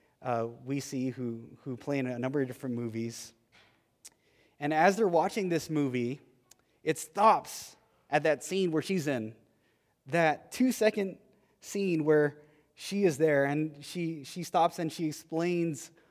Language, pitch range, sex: English, 125-170 Hz, male